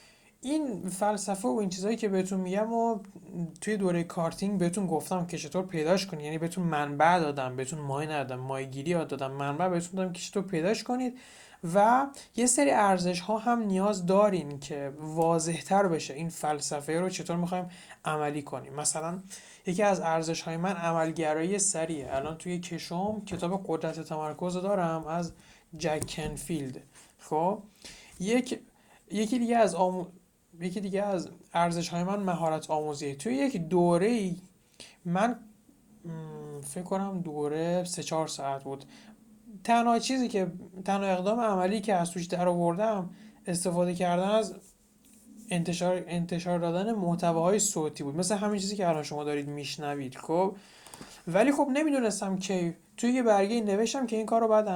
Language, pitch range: Persian, 165-210 Hz